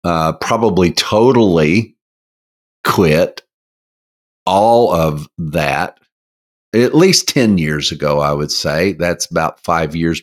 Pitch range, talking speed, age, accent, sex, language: 80-135 Hz, 110 wpm, 50-69, American, male, English